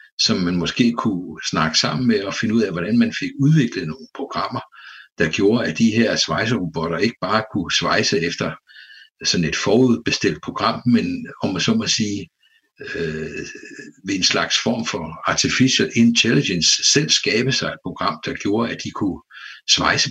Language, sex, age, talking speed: Danish, male, 60-79, 170 wpm